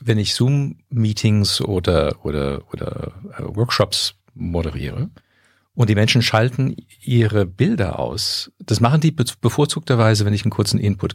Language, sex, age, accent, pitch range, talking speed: German, male, 50-69, German, 95-125 Hz, 135 wpm